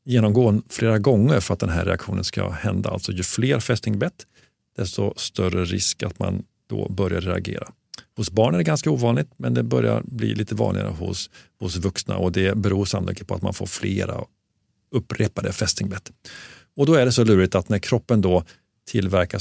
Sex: male